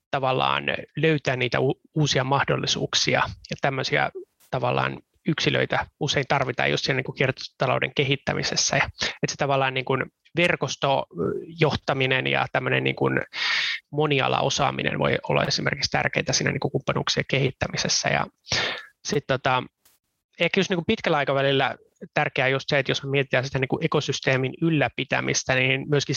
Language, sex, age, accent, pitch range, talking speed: Finnish, male, 20-39, native, 130-145 Hz, 120 wpm